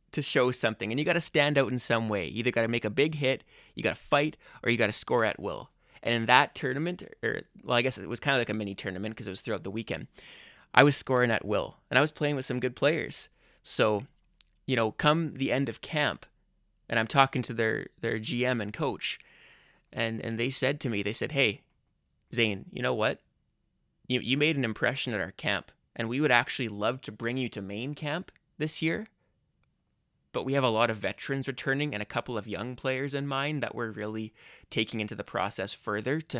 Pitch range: 110-140 Hz